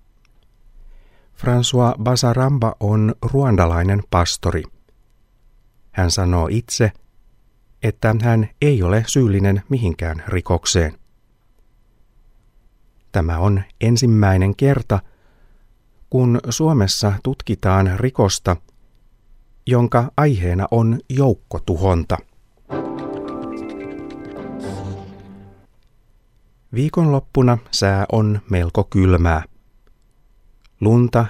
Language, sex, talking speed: Finnish, male, 65 wpm